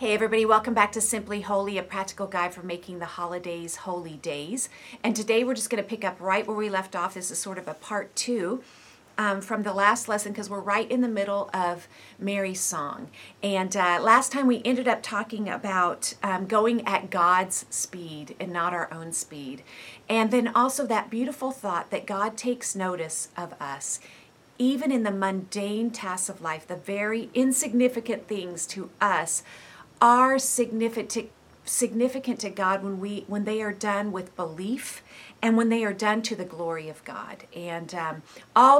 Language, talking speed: English, 185 wpm